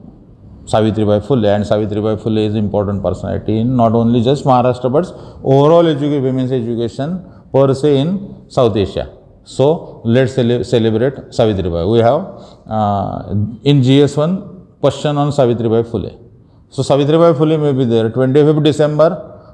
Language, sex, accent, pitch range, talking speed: Marathi, male, native, 110-145 Hz, 140 wpm